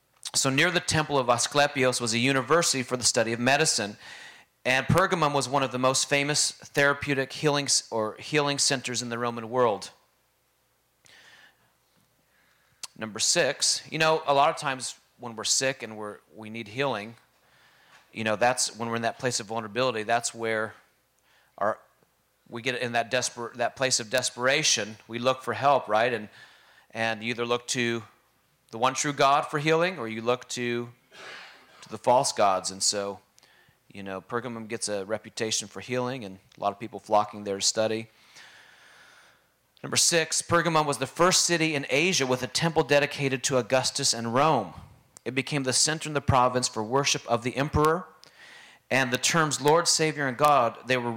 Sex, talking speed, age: male, 175 wpm, 30-49